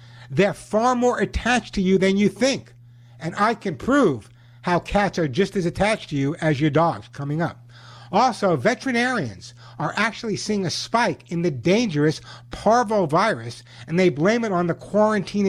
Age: 60-79